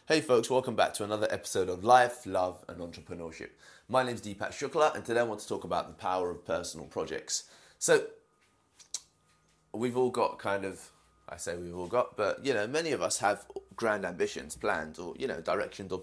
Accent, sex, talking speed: British, male, 205 wpm